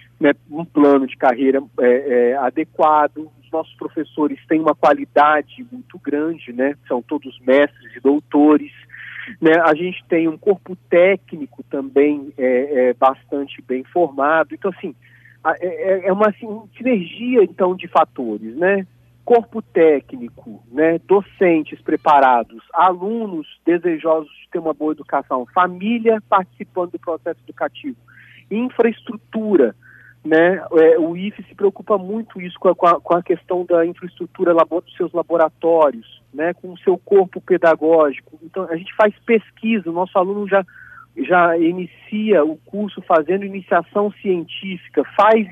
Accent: Brazilian